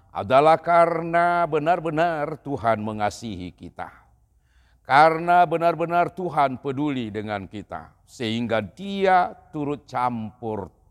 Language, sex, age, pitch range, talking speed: Indonesian, male, 50-69, 125-170 Hz, 90 wpm